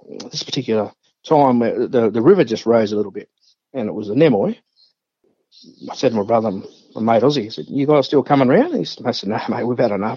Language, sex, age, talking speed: English, male, 50-69, 240 wpm